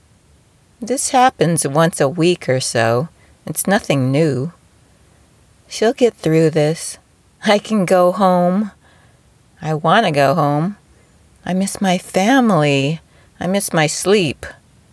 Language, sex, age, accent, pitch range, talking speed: English, female, 40-59, American, 130-180 Hz, 125 wpm